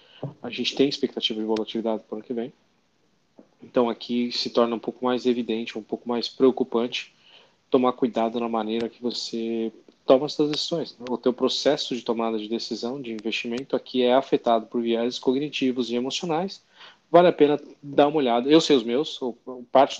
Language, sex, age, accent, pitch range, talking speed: Portuguese, male, 20-39, Brazilian, 120-135 Hz, 185 wpm